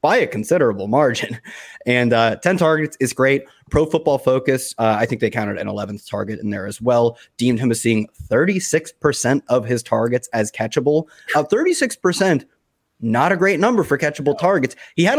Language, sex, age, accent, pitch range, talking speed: English, male, 20-39, American, 120-160 Hz, 180 wpm